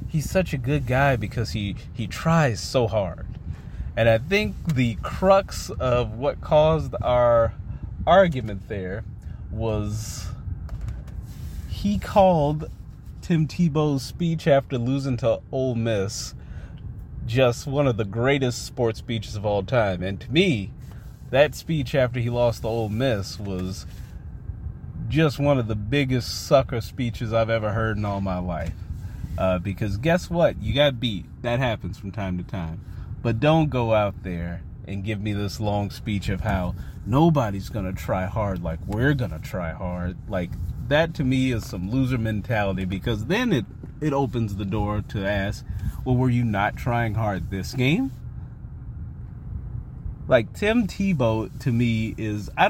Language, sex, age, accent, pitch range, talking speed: English, male, 30-49, American, 100-130 Hz, 155 wpm